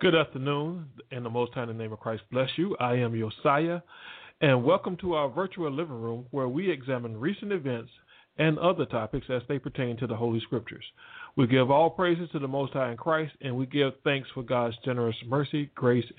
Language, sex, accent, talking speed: English, male, American, 210 wpm